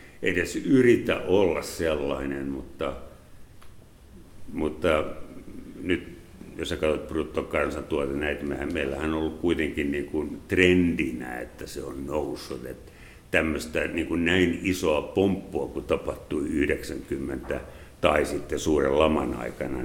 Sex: male